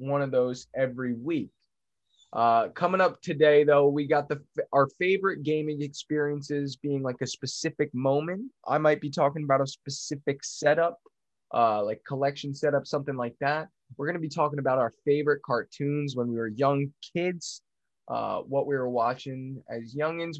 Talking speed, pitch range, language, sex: 170 wpm, 125-155 Hz, English, male